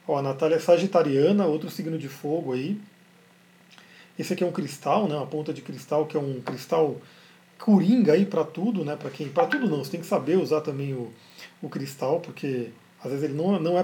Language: Portuguese